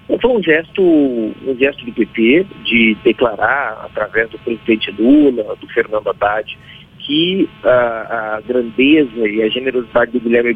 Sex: male